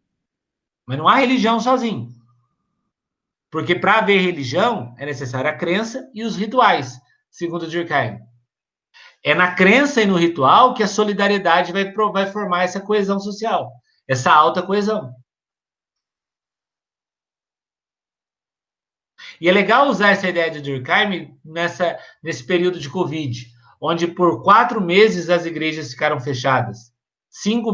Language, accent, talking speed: Portuguese, Brazilian, 125 wpm